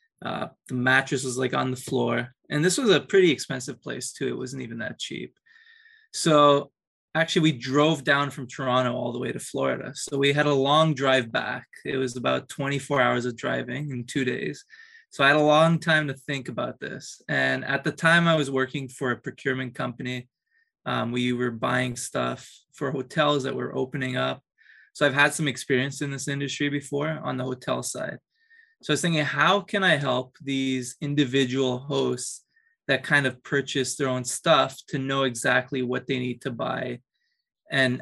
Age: 20-39